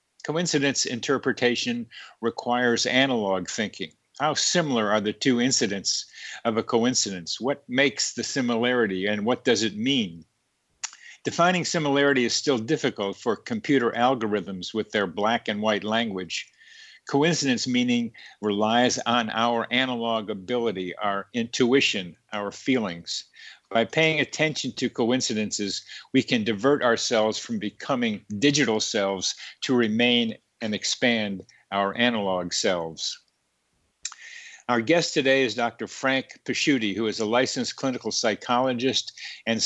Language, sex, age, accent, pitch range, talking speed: English, male, 50-69, American, 110-135 Hz, 125 wpm